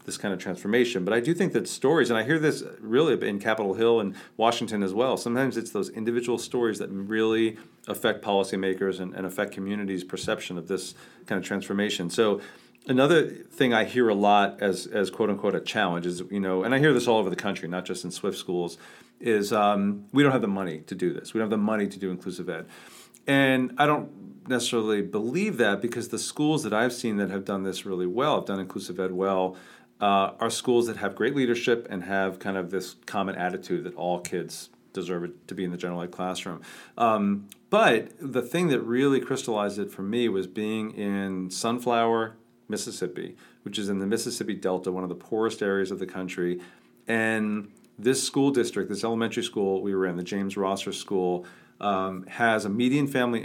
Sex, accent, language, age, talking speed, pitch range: male, American, English, 40-59, 205 wpm, 95-115 Hz